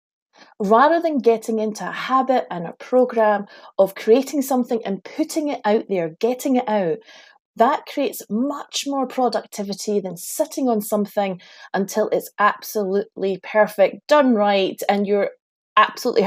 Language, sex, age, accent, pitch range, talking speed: English, female, 30-49, British, 200-265 Hz, 140 wpm